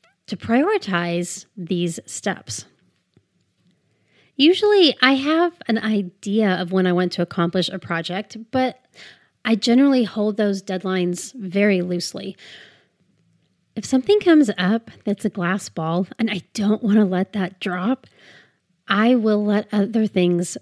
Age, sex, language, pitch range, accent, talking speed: 30-49, female, English, 180-220 Hz, American, 130 wpm